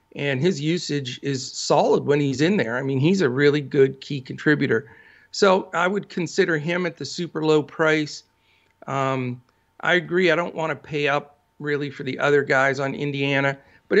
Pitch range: 135-180 Hz